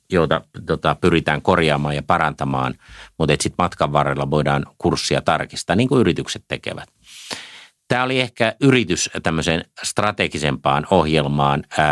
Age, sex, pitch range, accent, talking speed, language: 50-69, male, 75-90 Hz, native, 120 wpm, Finnish